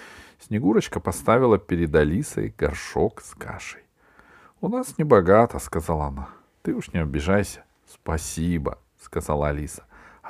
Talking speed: 145 wpm